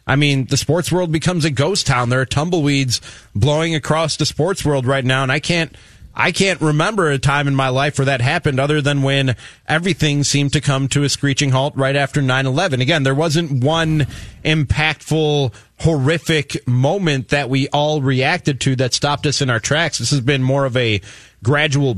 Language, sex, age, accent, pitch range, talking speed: English, male, 30-49, American, 130-160 Hz, 195 wpm